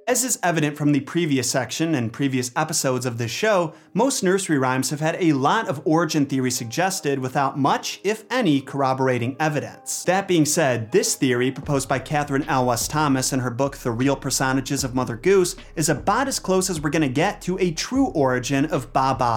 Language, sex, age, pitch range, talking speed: English, male, 30-49, 135-175 Hz, 200 wpm